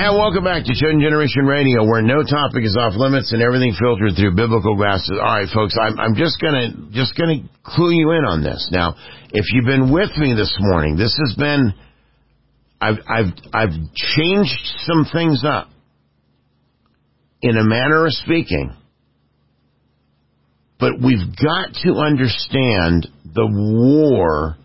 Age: 50-69